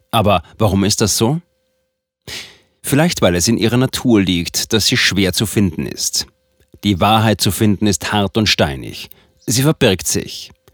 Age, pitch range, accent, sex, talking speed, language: 40-59, 95-125 Hz, German, male, 160 wpm, German